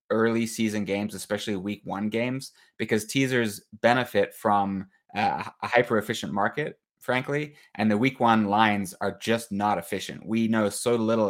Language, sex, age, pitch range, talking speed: English, male, 20-39, 100-120 Hz, 155 wpm